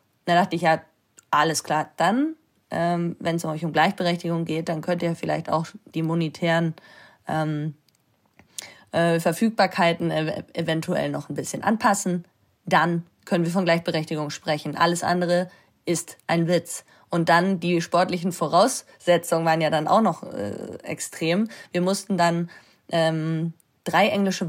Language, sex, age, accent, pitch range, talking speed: German, female, 20-39, German, 165-195 Hz, 145 wpm